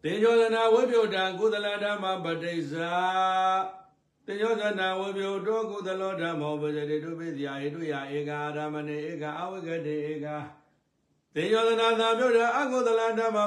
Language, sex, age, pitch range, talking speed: English, male, 60-79, 150-190 Hz, 80 wpm